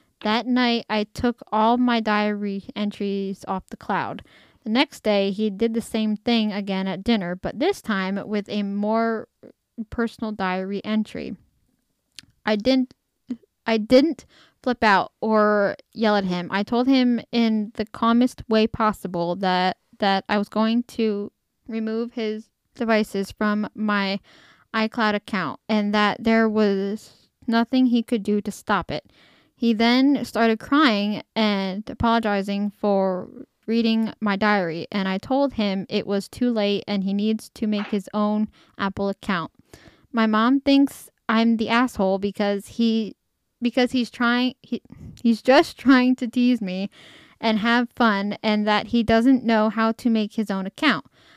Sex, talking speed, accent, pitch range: female, 155 wpm, American, 205-235 Hz